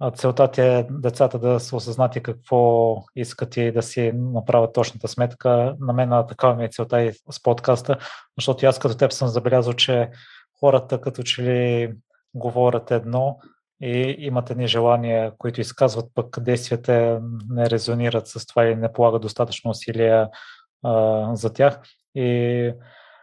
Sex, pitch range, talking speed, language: male, 115-125 Hz, 145 wpm, Bulgarian